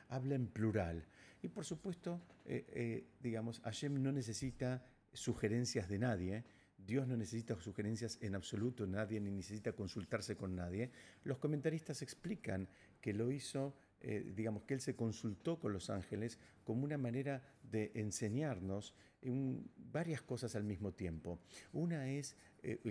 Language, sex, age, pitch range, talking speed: Spanish, male, 50-69, 100-130 Hz, 145 wpm